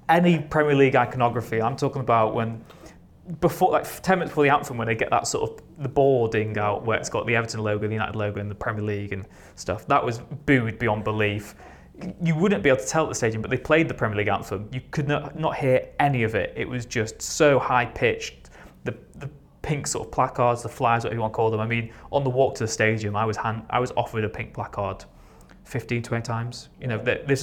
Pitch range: 105-130 Hz